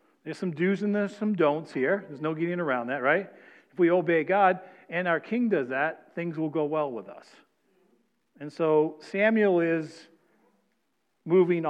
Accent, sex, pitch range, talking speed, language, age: American, male, 145-180 Hz, 175 wpm, English, 50-69